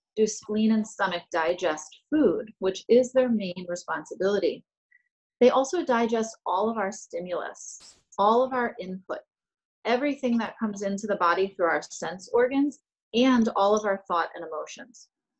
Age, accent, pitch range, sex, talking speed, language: 30-49, American, 185-255 Hz, female, 150 wpm, English